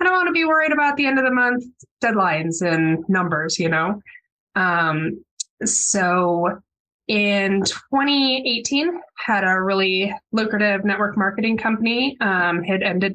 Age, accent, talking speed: 20-39, American, 135 wpm